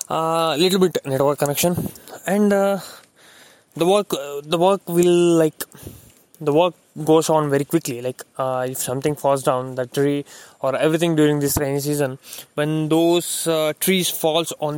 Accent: Indian